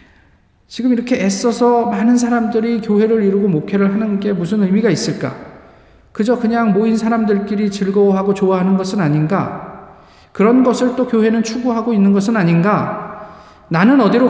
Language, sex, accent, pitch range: Korean, male, native, 185-240 Hz